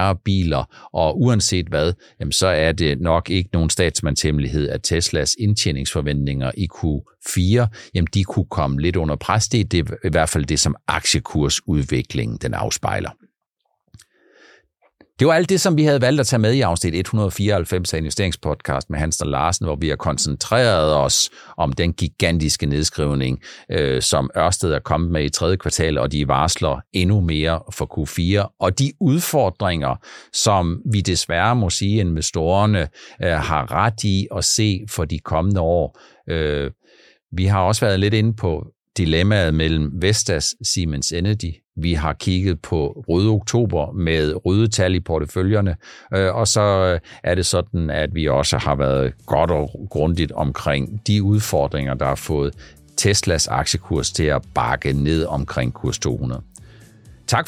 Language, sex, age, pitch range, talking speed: Danish, male, 60-79, 75-105 Hz, 150 wpm